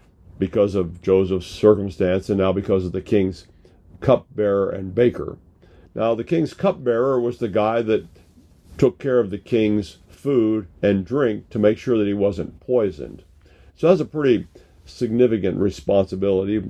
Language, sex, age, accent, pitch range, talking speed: English, male, 50-69, American, 90-110 Hz, 150 wpm